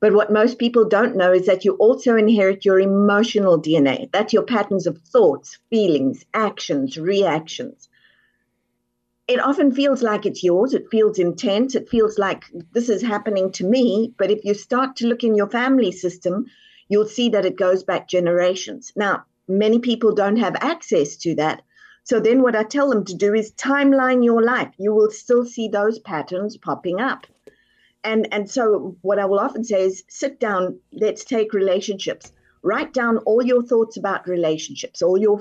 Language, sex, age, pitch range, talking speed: English, female, 50-69, 185-235 Hz, 180 wpm